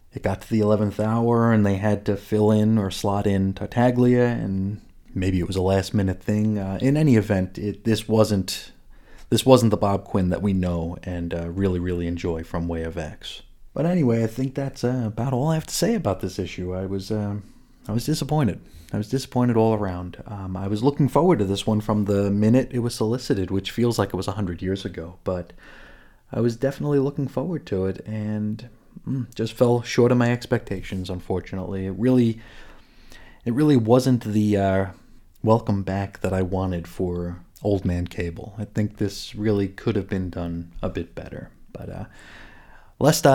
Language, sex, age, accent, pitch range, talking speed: English, male, 30-49, American, 95-120 Hz, 195 wpm